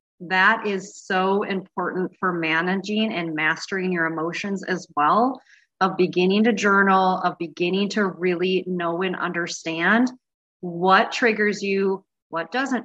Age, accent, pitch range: 30-49, American, 175-210 Hz